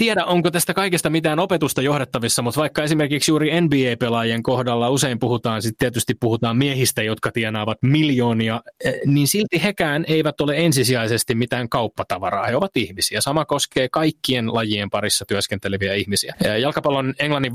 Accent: native